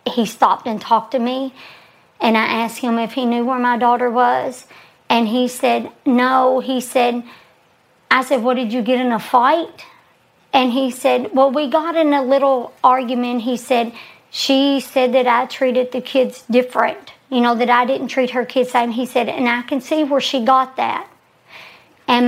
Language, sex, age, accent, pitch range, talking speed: English, male, 50-69, American, 235-280 Hz, 195 wpm